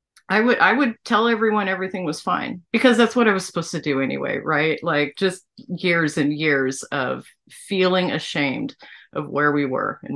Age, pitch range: 30-49, 150-210 Hz